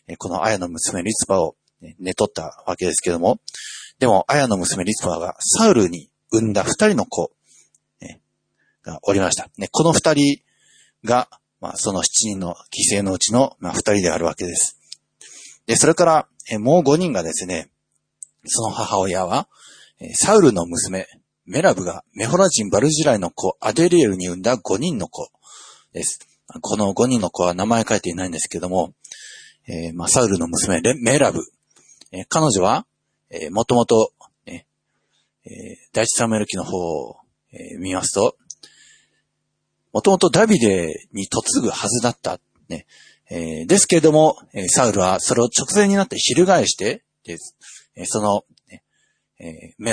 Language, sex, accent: Japanese, male, native